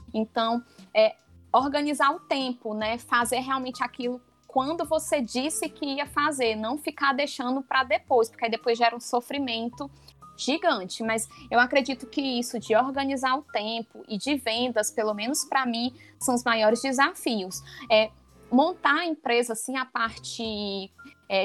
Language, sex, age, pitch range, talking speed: Portuguese, female, 20-39, 225-275 Hz, 155 wpm